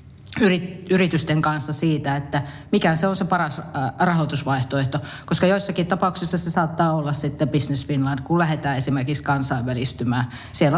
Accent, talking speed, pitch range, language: native, 135 wpm, 135-160 Hz, Finnish